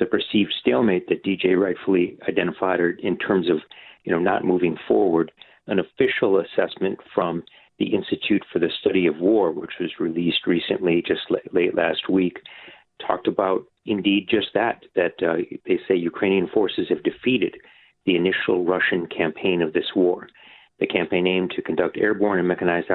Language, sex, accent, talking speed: English, male, American, 165 wpm